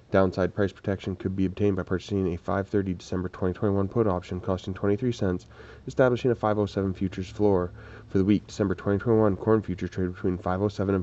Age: 20-39